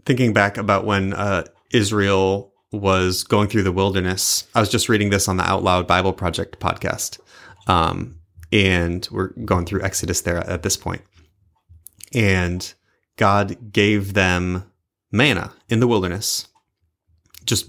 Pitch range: 90-110 Hz